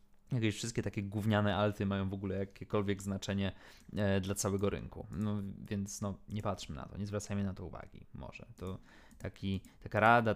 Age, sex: 20-39, male